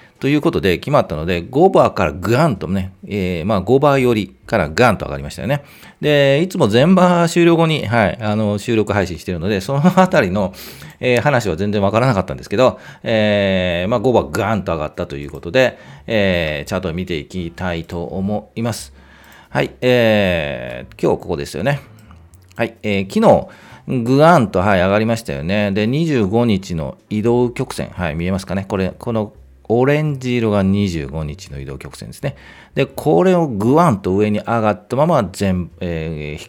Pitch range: 90-130 Hz